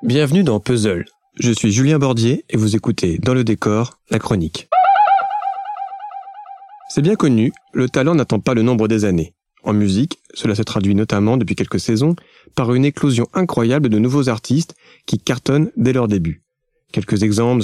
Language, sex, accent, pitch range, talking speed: French, male, French, 110-145 Hz, 165 wpm